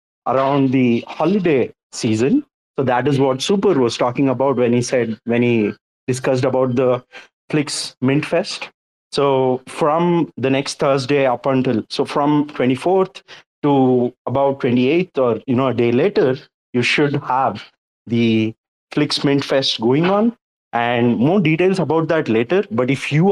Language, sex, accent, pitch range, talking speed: English, male, Indian, 125-160 Hz, 155 wpm